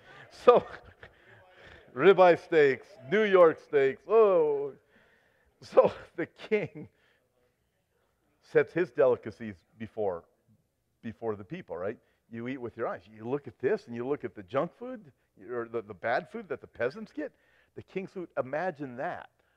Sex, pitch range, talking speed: male, 120-195 Hz, 145 wpm